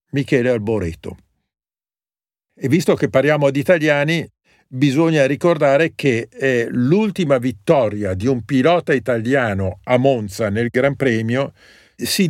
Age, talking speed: 50-69, 110 wpm